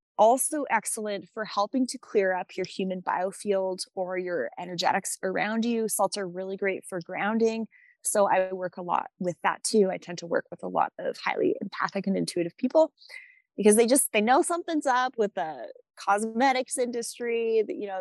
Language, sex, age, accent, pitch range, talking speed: English, female, 20-39, American, 190-245 Hz, 185 wpm